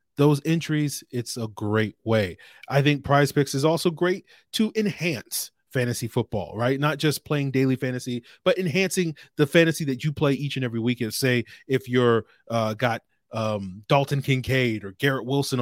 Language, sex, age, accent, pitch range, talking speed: English, male, 30-49, American, 115-160 Hz, 175 wpm